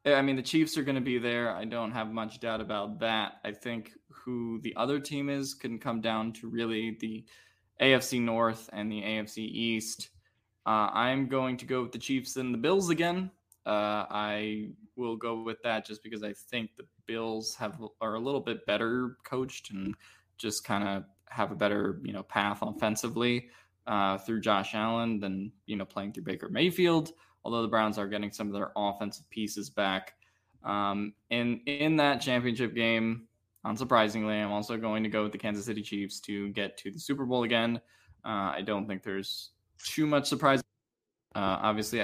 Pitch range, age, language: 105-120 Hz, 20-39, English